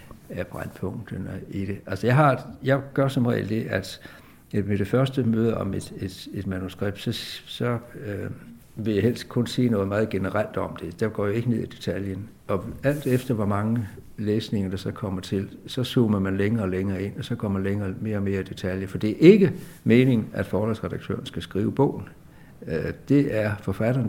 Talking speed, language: 205 wpm, Danish